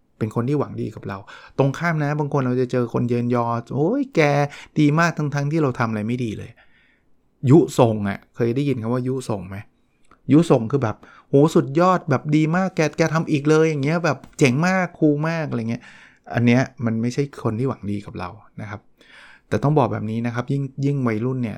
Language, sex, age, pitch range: English, male, 20-39, 110-145 Hz